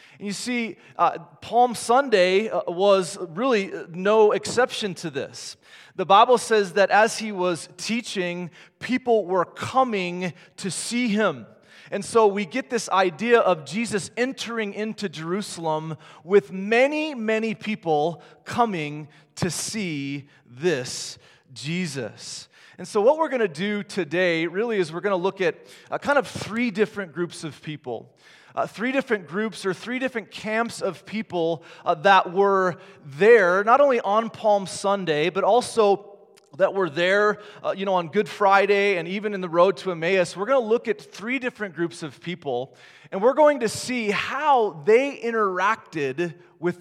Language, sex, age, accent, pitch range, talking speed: English, male, 30-49, American, 175-225 Hz, 160 wpm